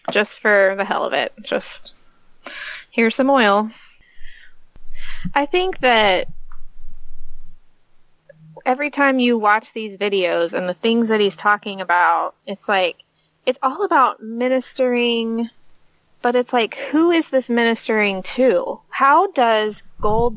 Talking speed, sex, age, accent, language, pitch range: 125 wpm, female, 20-39, American, English, 205-260 Hz